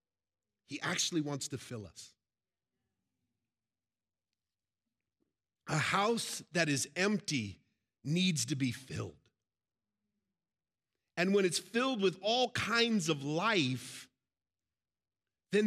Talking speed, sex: 95 wpm, male